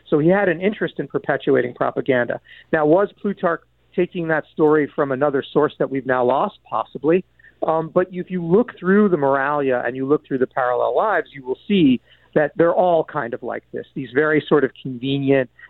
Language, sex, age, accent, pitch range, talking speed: English, male, 50-69, American, 130-165 Hz, 200 wpm